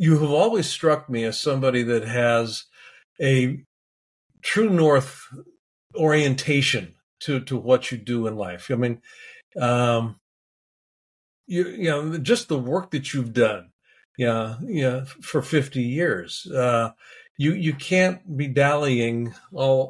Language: English